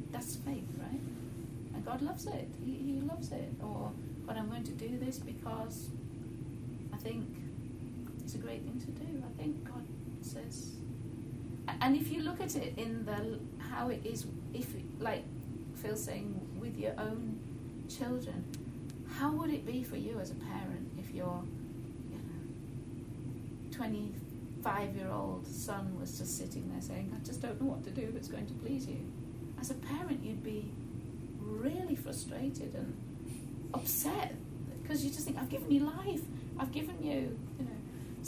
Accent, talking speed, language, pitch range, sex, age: British, 160 wpm, English, 115-140 Hz, female, 30-49